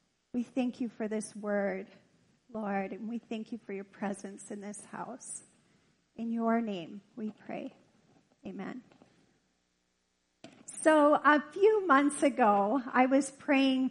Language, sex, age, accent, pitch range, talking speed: English, female, 30-49, American, 230-300 Hz, 135 wpm